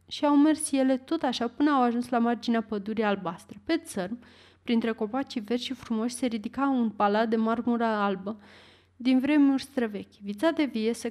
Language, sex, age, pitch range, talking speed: Romanian, female, 30-49, 215-270 Hz, 185 wpm